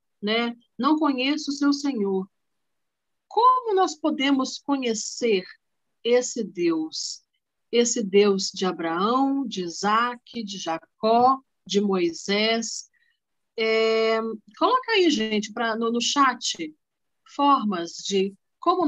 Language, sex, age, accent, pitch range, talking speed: Portuguese, female, 50-69, Brazilian, 210-305 Hz, 100 wpm